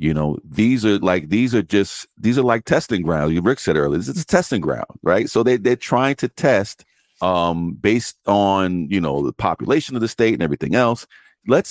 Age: 50-69